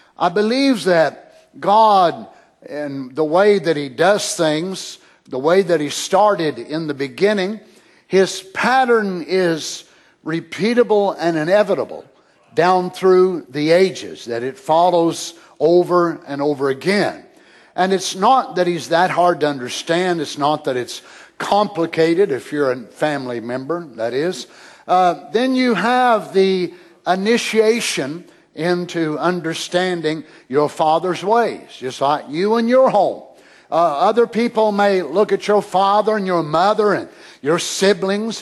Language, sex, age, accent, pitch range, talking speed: English, male, 60-79, American, 165-220 Hz, 135 wpm